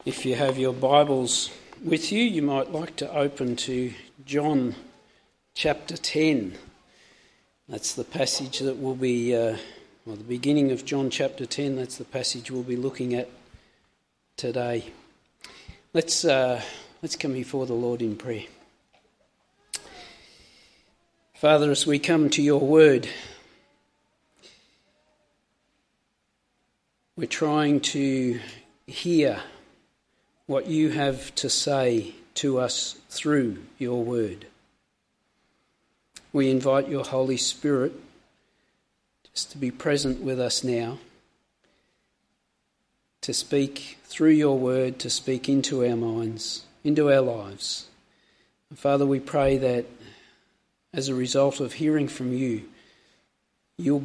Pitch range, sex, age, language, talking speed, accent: 125-145 Hz, male, 50-69, English, 120 wpm, Australian